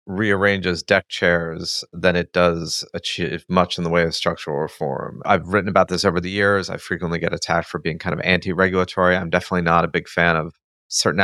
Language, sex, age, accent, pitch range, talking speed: English, male, 30-49, American, 85-95 Hz, 205 wpm